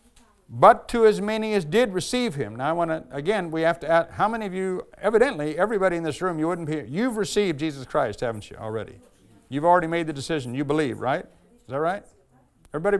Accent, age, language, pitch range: American, 50-69, English, 150-205 Hz